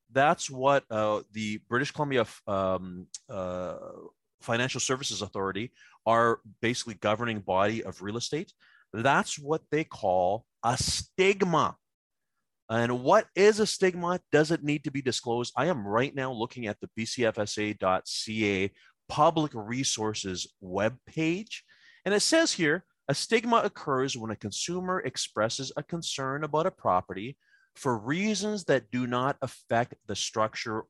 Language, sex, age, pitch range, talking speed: English, male, 30-49, 105-150 Hz, 135 wpm